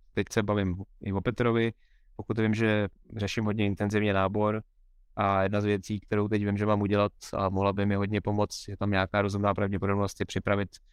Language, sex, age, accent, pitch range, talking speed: Czech, male, 20-39, native, 95-115 Hz, 190 wpm